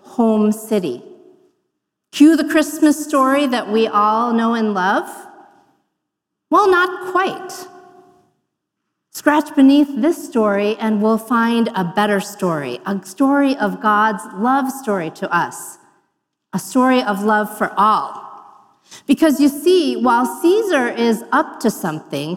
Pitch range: 220-310 Hz